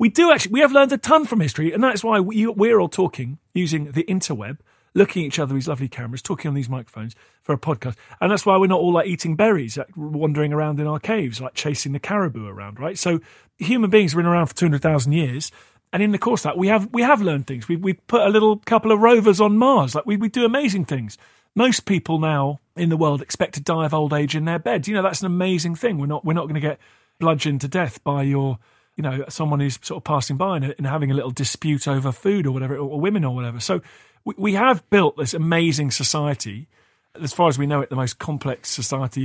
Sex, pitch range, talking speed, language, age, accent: male, 140-190 Hz, 255 wpm, English, 40-59, British